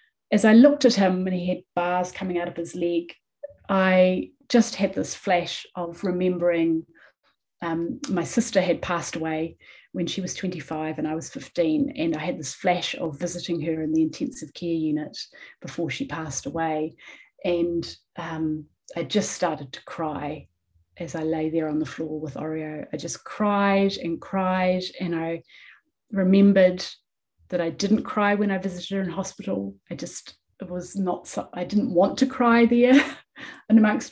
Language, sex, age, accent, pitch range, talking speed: English, female, 30-49, British, 165-205 Hz, 175 wpm